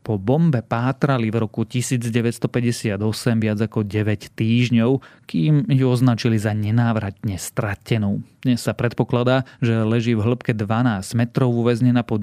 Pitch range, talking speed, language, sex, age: 110-130 Hz, 130 wpm, Slovak, male, 30-49